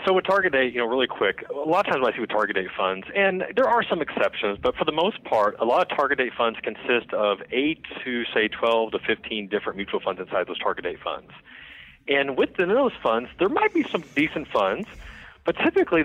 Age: 40-59